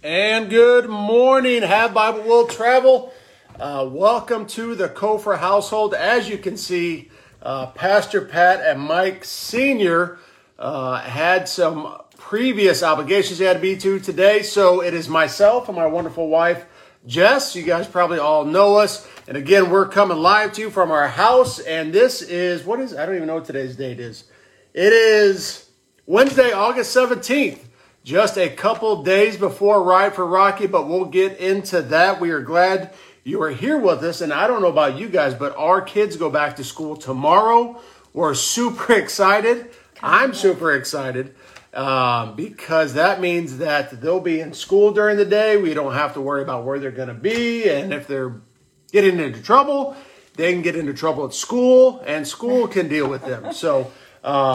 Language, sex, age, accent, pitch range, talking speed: English, male, 40-59, American, 155-215 Hz, 180 wpm